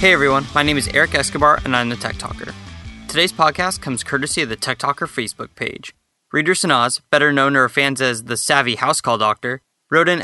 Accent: American